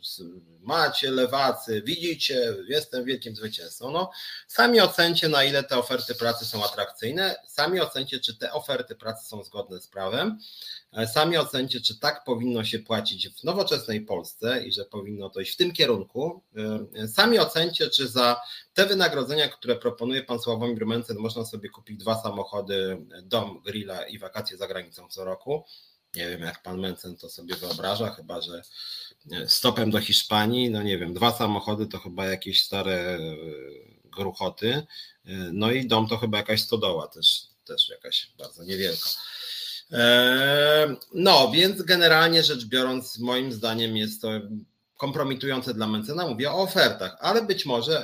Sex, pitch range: male, 105-140 Hz